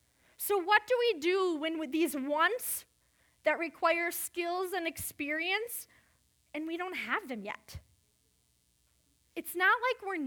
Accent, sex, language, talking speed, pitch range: American, female, English, 140 wpm, 285-390 Hz